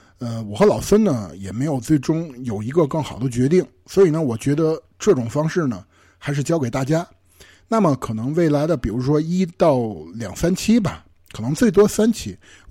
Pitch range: 110-170 Hz